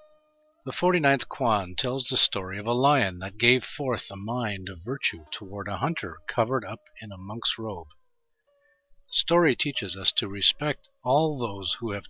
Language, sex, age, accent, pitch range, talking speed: English, male, 50-69, American, 100-135 Hz, 170 wpm